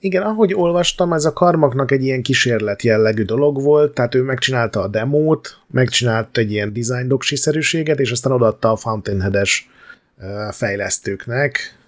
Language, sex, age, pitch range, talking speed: Hungarian, male, 30-49, 110-130 Hz, 140 wpm